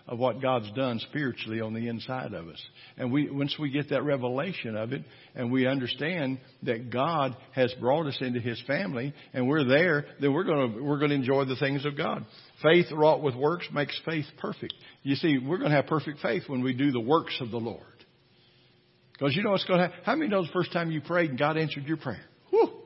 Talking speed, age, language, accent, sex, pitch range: 220 wpm, 50-69, English, American, male, 130-165 Hz